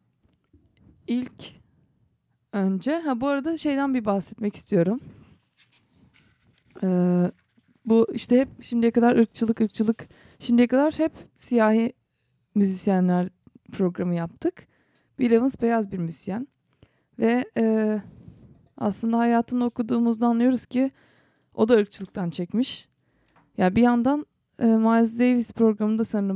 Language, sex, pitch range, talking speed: Turkish, female, 195-240 Hz, 110 wpm